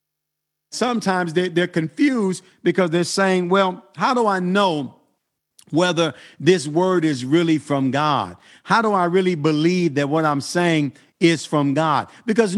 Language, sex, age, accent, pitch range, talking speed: English, male, 50-69, American, 155-180 Hz, 150 wpm